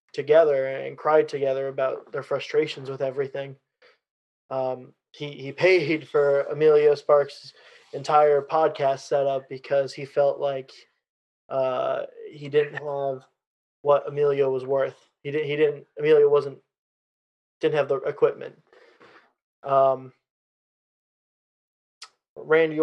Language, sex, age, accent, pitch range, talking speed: English, male, 20-39, American, 135-155 Hz, 115 wpm